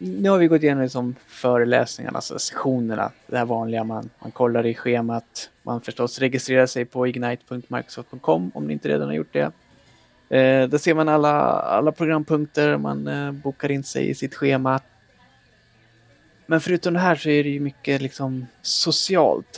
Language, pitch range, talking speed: Swedish, 115-150 Hz, 170 wpm